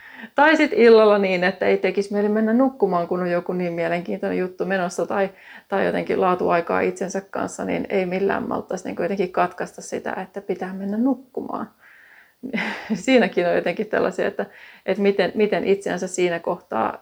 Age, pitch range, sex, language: 30-49, 185-230 Hz, female, Finnish